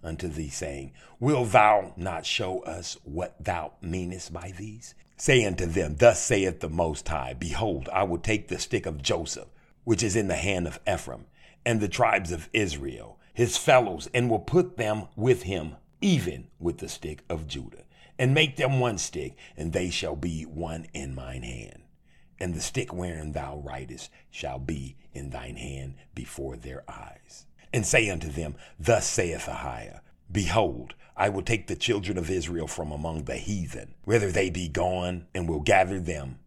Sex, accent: male, American